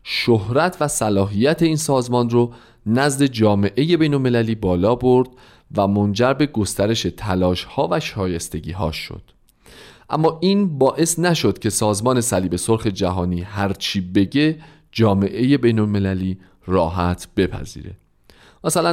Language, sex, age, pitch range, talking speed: Persian, male, 40-59, 95-140 Hz, 115 wpm